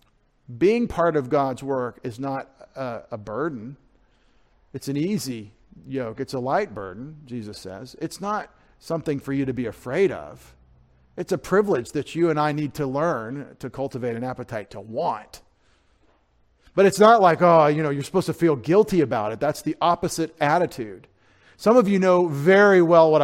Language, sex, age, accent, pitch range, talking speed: English, male, 50-69, American, 120-155 Hz, 180 wpm